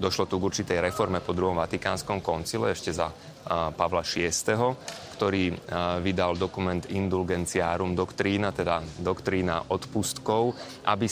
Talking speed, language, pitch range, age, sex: 120 wpm, Slovak, 90-105 Hz, 30-49, male